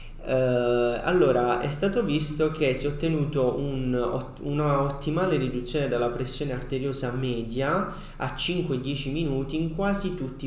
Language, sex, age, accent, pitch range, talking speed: Italian, male, 30-49, native, 125-150 Hz, 140 wpm